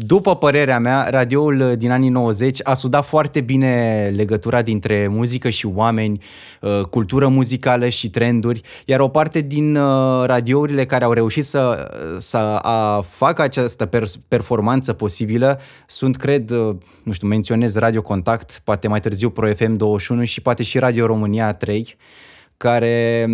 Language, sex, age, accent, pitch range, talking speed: Romanian, male, 20-39, native, 105-130 Hz, 140 wpm